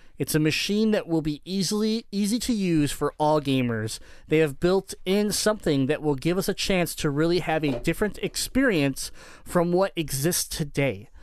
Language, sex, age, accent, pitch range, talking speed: English, male, 30-49, American, 140-185 Hz, 180 wpm